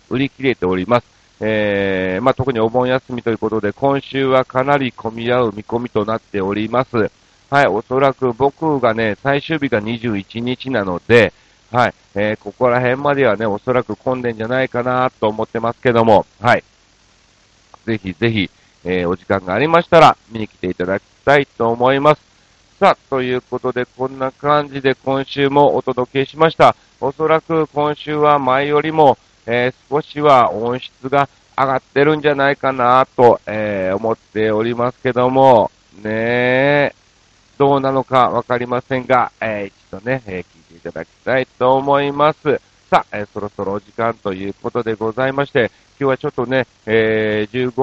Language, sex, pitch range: Japanese, male, 105-130 Hz